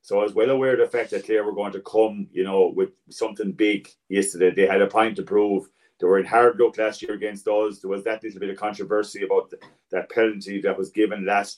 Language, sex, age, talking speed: English, male, 40-59, 255 wpm